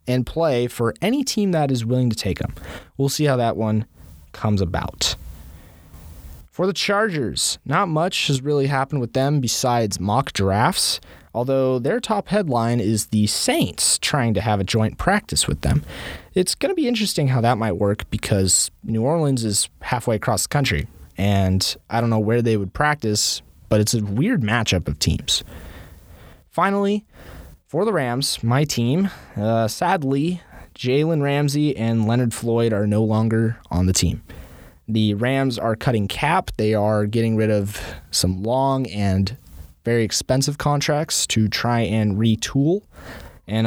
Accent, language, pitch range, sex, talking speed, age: American, English, 95-135 Hz, male, 160 wpm, 20-39